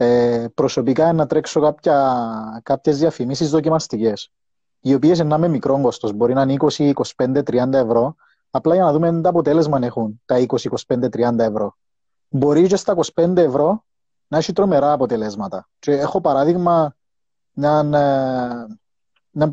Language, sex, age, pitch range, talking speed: Greek, male, 30-49, 120-160 Hz, 145 wpm